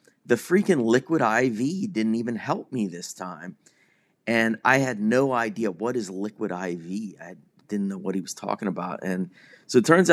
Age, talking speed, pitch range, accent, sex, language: 30-49, 185 wpm, 100-130 Hz, American, male, English